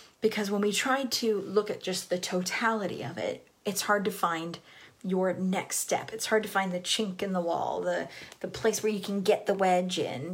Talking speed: 220 wpm